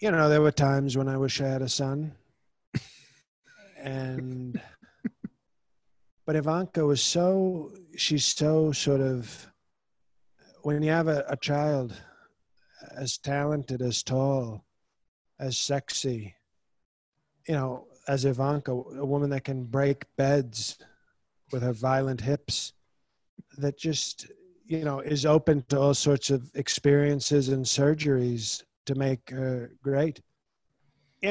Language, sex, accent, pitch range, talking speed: English, male, American, 130-150 Hz, 125 wpm